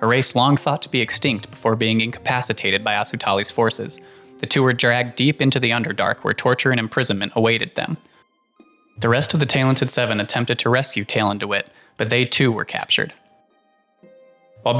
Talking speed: 175 wpm